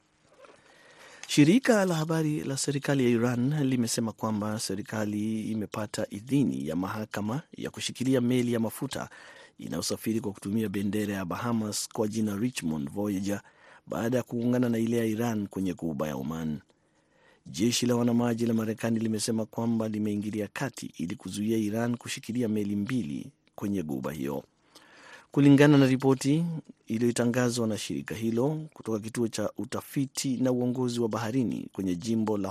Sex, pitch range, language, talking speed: male, 100-125 Hz, Swahili, 140 wpm